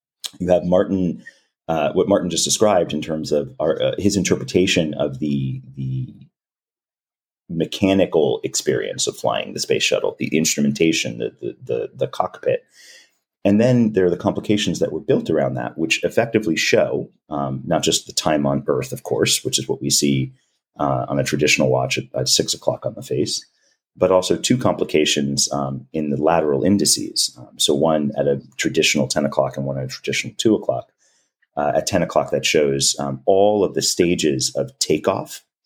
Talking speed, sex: 180 wpm, male